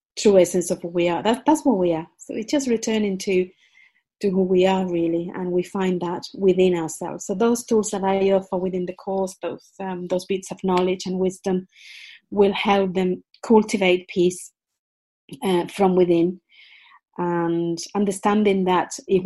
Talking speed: 170 wpm